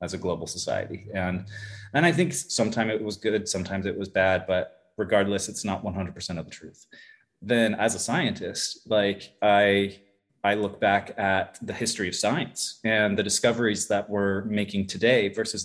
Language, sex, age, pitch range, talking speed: English, male, 30-49, 95-110 Hz, 175 wpm